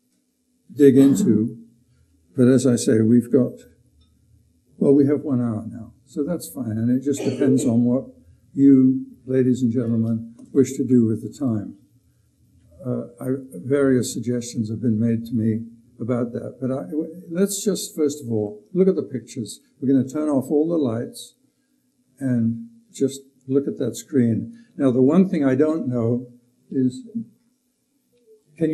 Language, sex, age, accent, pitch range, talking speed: English, male, 60-79, American, 120-200 Hz, 165 wpm